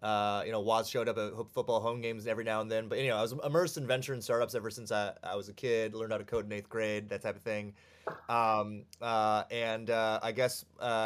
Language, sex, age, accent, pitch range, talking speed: English, male, 30-49, American, 100-115 Hz, 260 wpm